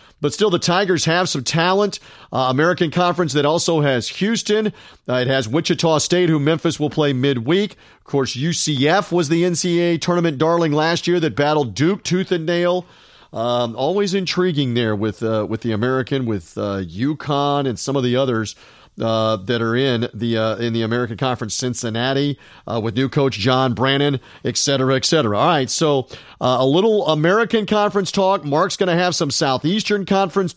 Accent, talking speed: American, 185 wpm